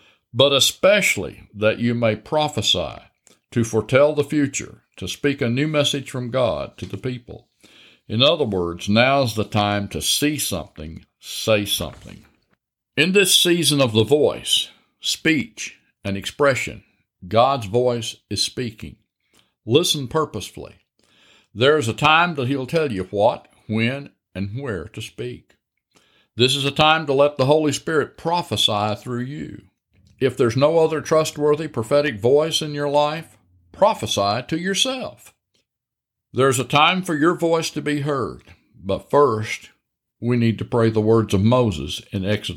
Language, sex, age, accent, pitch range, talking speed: English, male, 60-79, American, 105-145 Hz, 150 wpm